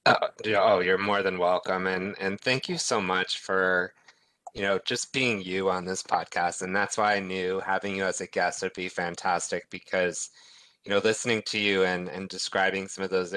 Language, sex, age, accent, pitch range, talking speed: English, male, 20-39, American, 90-100 Hz, 200 wpm